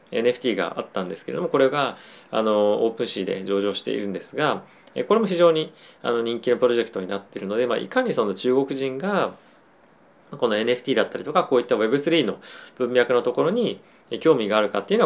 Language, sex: Japanese, male